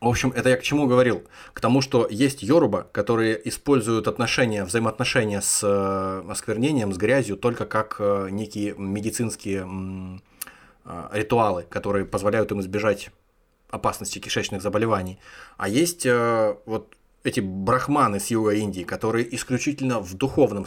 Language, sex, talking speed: Russian, male, 130 wpm